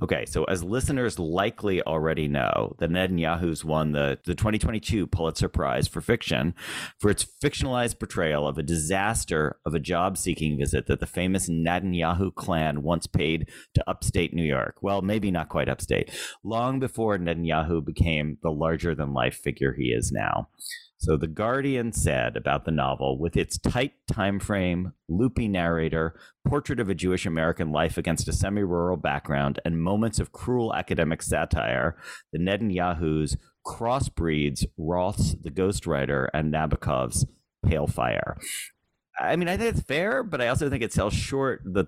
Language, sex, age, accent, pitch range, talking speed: English, male, 40-59, American, 80-105 Hz, 165 wpm